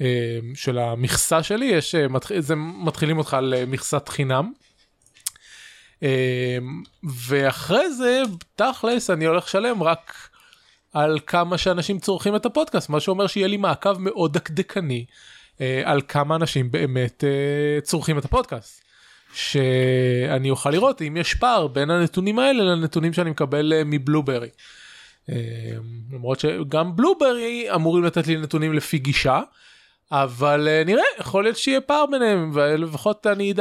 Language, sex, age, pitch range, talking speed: Hebrew, male, 20-39, 130-175 Hz, 130 wpm